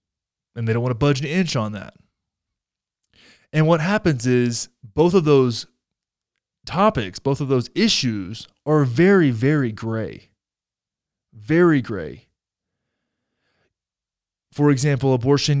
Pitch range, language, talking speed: 120-150 Hz, English, 120 wpm